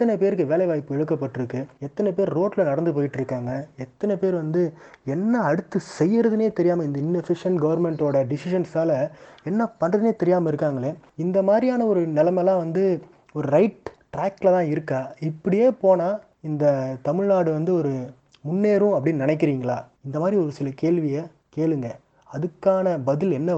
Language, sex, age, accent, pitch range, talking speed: Tamil, male, 30-49, native, 145-185 Hz, 135 wpm